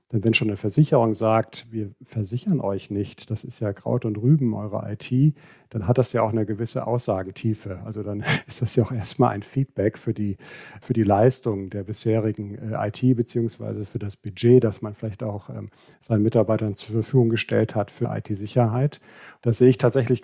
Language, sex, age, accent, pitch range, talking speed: German, male, 50-69, German, 110-125 Hz, 185 wpm